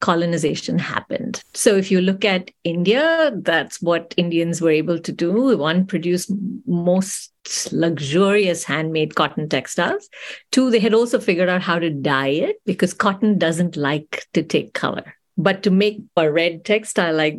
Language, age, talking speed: English, 50-69, 160 wpm